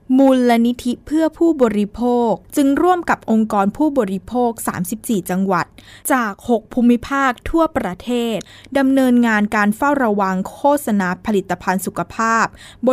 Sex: female